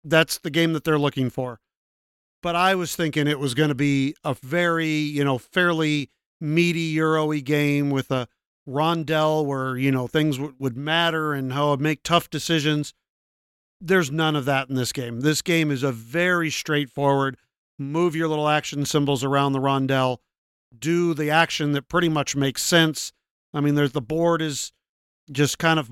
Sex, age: male, 50-69